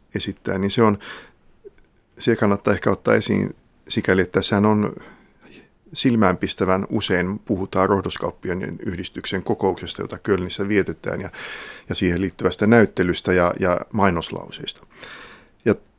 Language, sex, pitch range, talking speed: Finnish, male, 90-105 Hz, 115 wpm